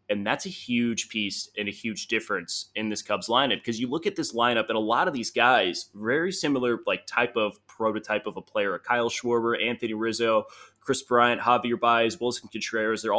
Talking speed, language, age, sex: 205 wpm, English, 20-39, male